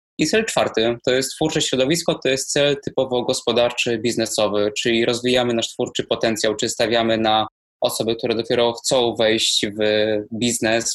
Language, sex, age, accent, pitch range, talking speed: Polish, male, 20-39, native, 115-130 Hz, 155 wpm